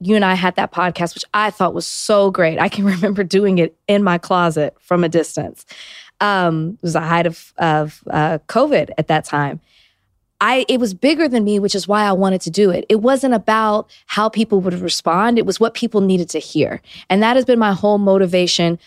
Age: 20-39